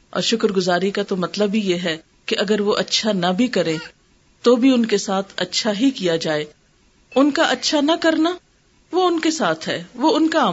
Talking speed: 215 wpm